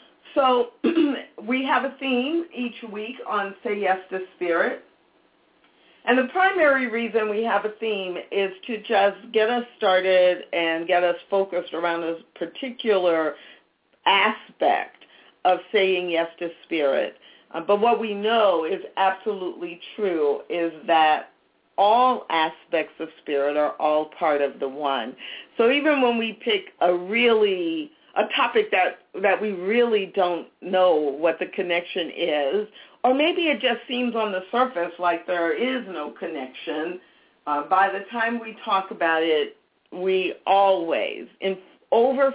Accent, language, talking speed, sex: American, English, 145 wpm, female